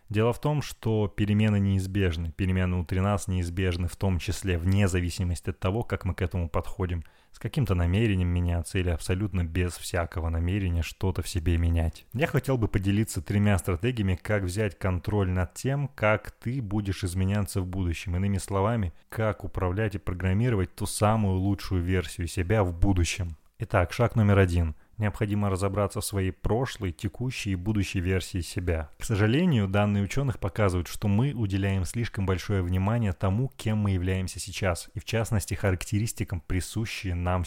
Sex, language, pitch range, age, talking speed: male, Russian, 90-105 Hz, 20-39, 160 wpm